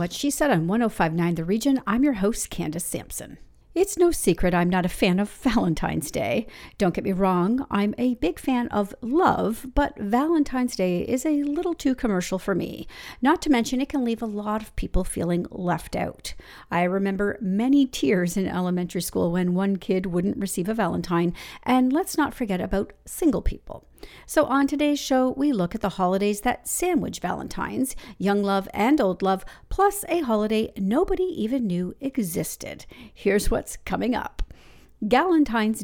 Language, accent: English, American